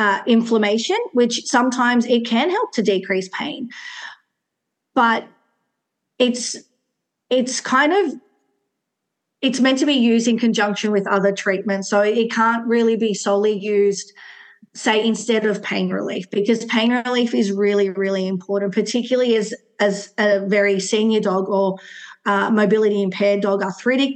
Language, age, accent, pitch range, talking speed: English, 40-59, Australian, 200-235 Hz, 140 wpm